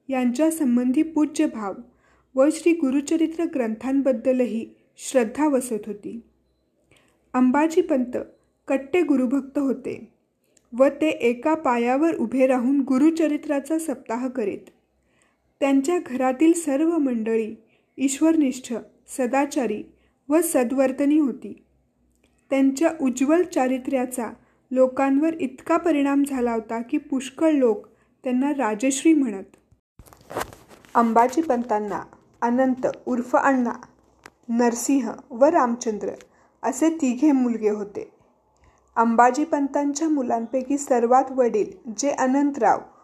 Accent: native